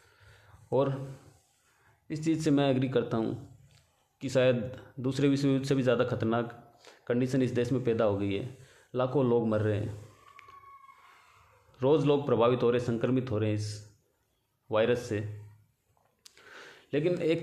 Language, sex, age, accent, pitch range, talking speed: Hindi, male, 30-49, native, 120-135 Hz, 150 wpm